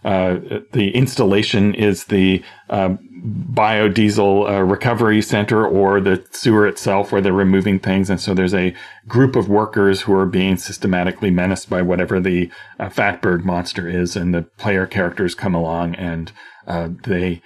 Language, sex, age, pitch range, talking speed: English, male, 40-59, 90-110 Hz, 160 wpm